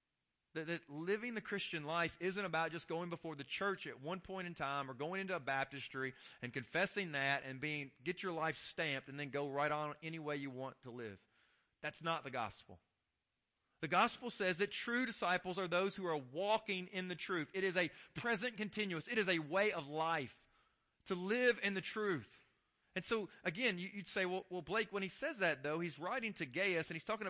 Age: 40-59